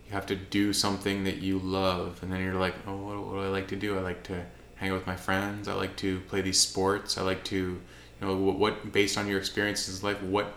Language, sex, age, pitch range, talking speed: English, male, 20-39, 90-100 Hz, 265 wpm